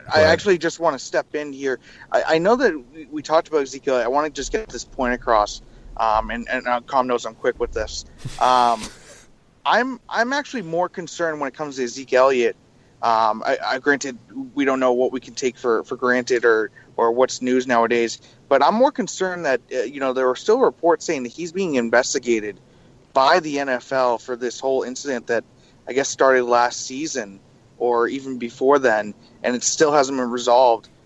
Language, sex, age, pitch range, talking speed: English, male, 30-49, 120-145 Hz, 200 wpm